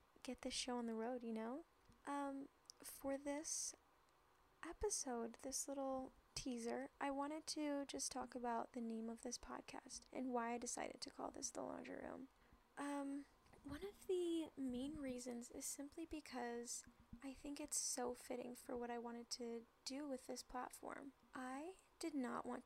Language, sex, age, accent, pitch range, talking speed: English, female, 10-29, American, 240-275 Hz, 165 wpm